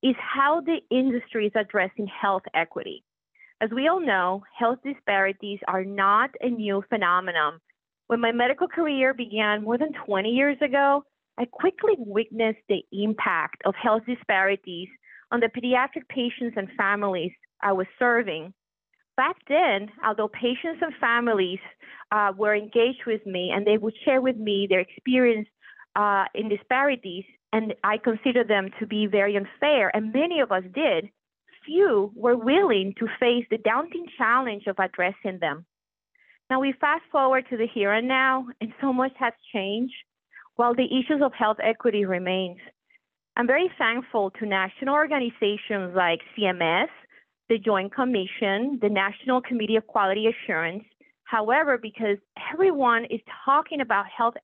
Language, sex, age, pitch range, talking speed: English, female, 30-49, 200-260 Hz, 150 wpm